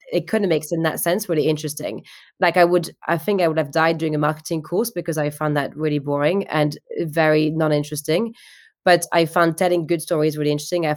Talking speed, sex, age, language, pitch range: 210 wpm, female, 20-39, English, 155-170 Hz